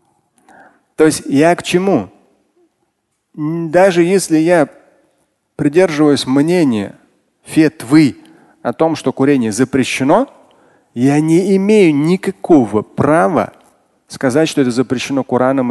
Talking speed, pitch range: 100 wpm, 130-160 Hz